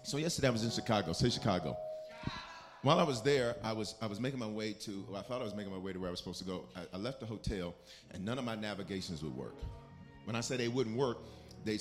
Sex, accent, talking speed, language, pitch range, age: male, American, 270 wpm, English, 95-125 Hz, 40-59